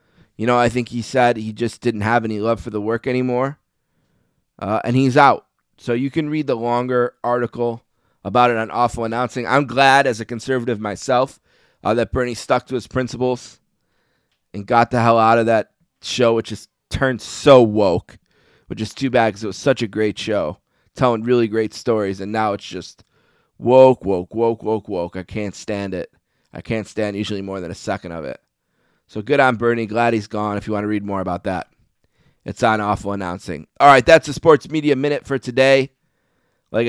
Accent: American